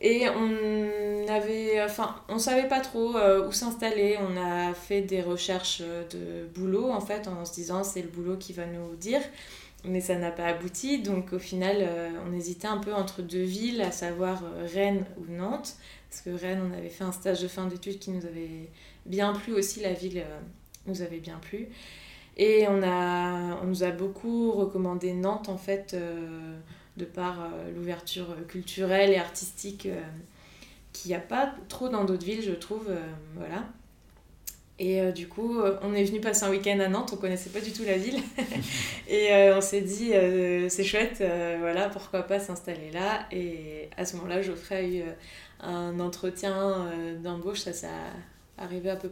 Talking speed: 195 wpm